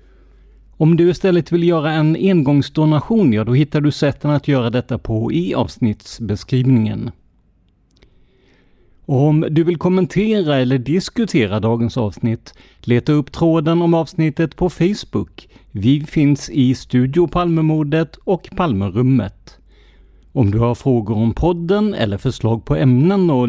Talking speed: 135 wpm